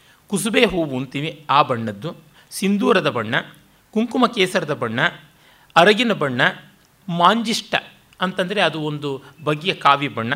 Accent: native